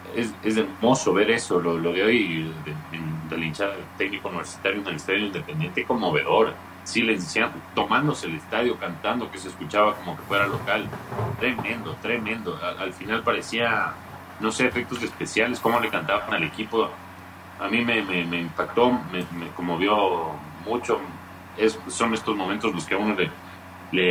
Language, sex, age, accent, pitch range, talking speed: Spanish, male, 40-59, Mexican, 90-110 Hz, 175 wpm